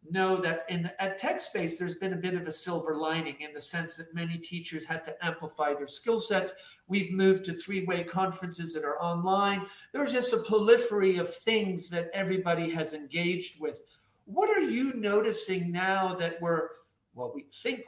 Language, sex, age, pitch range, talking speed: English, male, 50-69, 165-195 Hz, 190 wpm